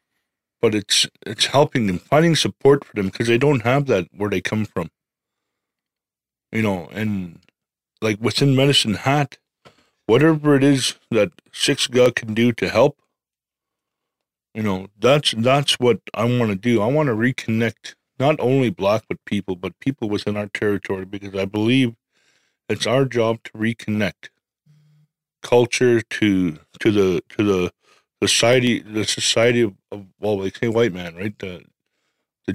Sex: male